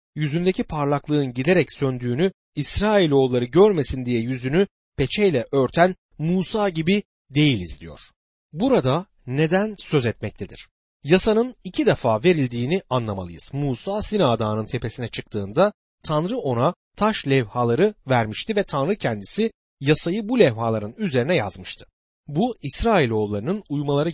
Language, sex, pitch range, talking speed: Turkish, male, 115-190 Hz, 105 wpm